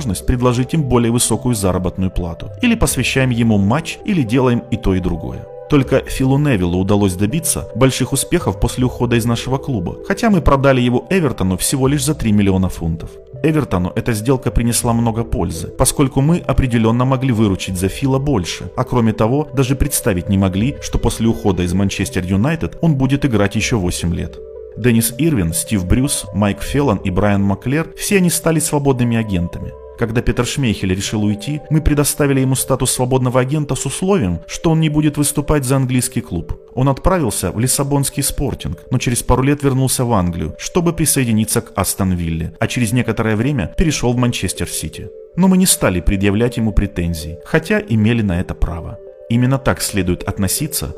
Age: 30-49